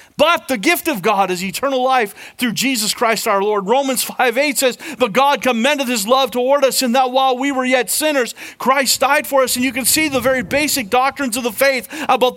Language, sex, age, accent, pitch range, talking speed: English, male, 40-59, American, 210-275 Hz, 225 wpm